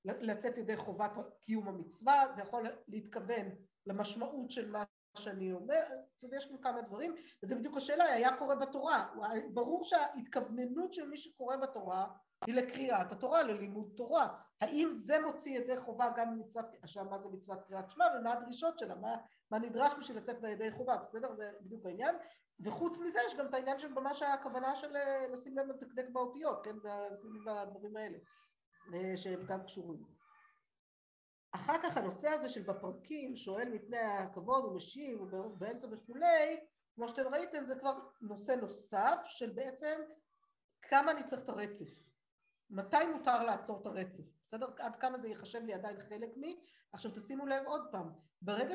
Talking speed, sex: 155 wpm, female